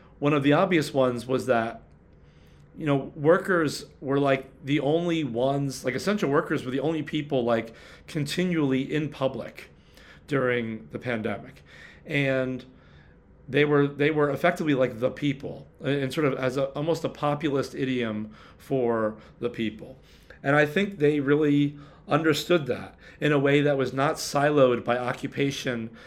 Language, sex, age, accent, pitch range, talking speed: English, male, 40-59, American, 120-145 Hz, 150 wpm